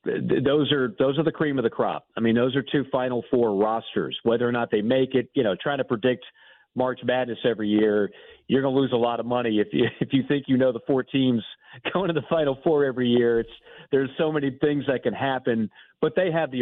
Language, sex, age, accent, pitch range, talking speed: English, male, 50-69, American, 125-155 Hz, 250 wpm